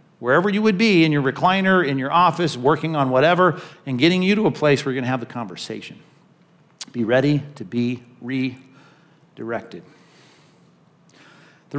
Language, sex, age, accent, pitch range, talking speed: English, male, 40-59, American, 135-175 Hz, 165 wpm